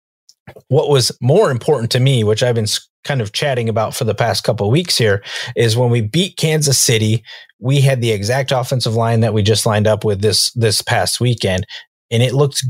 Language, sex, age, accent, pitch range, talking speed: English, male, 30-49, American, 110-130 Hz, 215 wpm